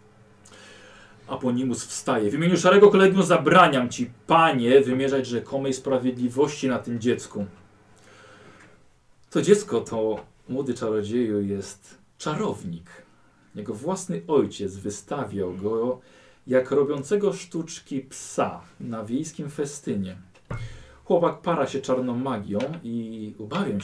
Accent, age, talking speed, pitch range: native, 40-59, 105 wpm, 105-145 Hz